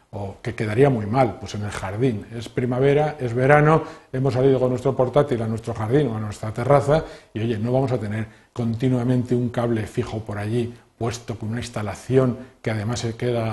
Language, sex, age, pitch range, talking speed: Spanish, male, 40-59, 110-135 Hz, 200 wpm